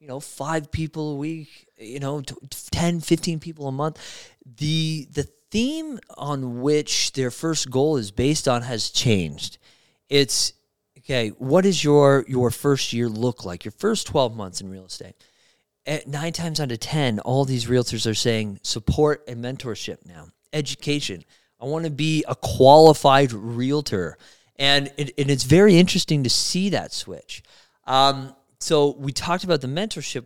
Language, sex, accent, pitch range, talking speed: English, male, American, 120-155 Hz, 165 wpm